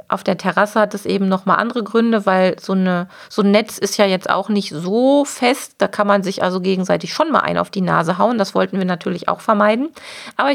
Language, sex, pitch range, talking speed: German, female, 195-230 Hz, 235 wpm